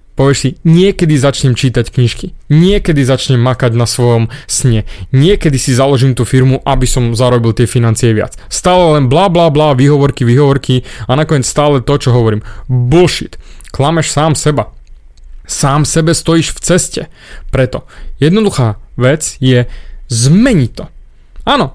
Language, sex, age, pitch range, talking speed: Slovak, male, 30-49, 125-155 Hz, 140 wpm